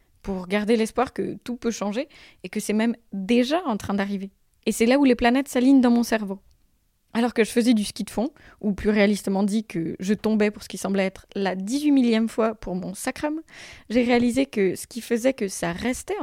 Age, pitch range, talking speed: 20-39, 195-235 Hz, 225 wpm